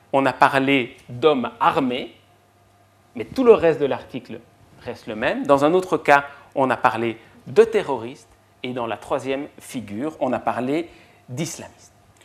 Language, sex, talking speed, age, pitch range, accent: French, male, 155 wpm, 40-59, 115-165 Hz, French